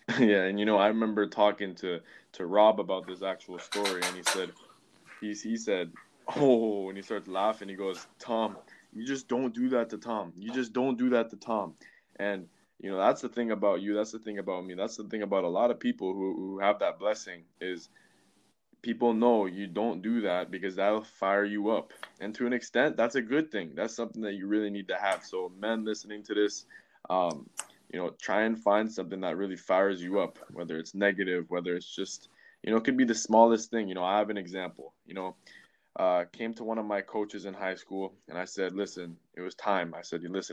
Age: 20-39